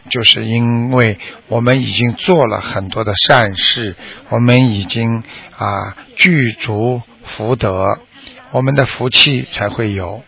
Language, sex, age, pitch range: Chinese, male, 60-79, 115-150 Hz